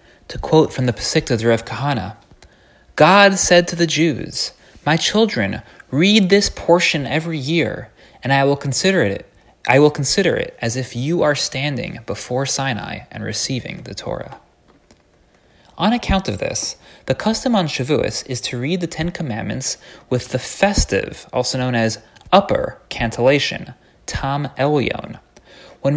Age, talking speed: 30-49, 140 wpm